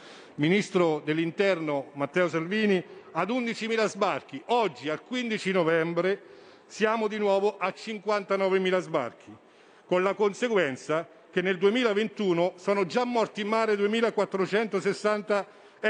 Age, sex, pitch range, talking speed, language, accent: 50-69, male, 185-225 Hz, 110 wpm, Italian, native